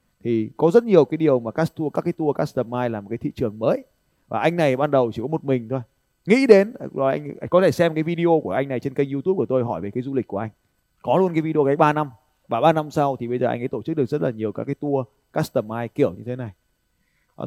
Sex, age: male, 20-39